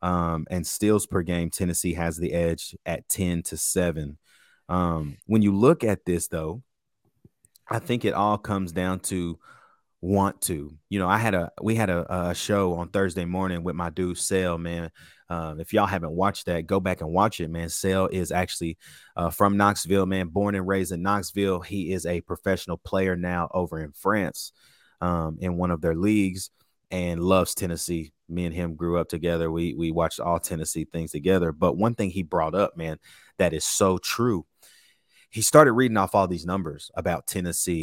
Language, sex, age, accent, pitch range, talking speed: English, male, 30-49, American, 85-100 Hz, 195 wpm